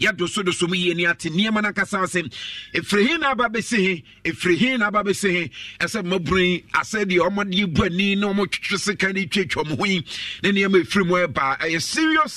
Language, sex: English, male